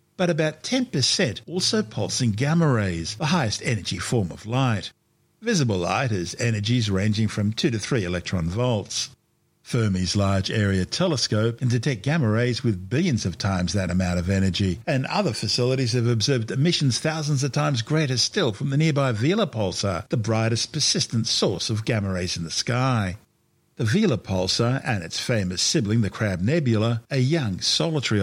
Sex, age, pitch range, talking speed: male, 50-69, 105-140 Hz, 170 wpm